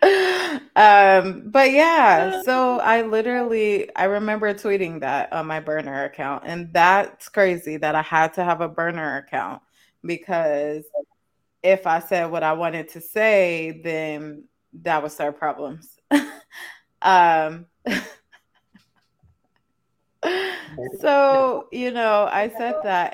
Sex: female